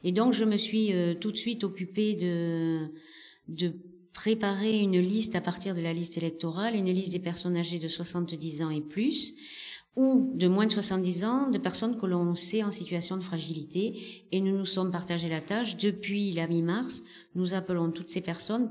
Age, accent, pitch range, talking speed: 40-59, French, 165-200 Hz, 195 wpm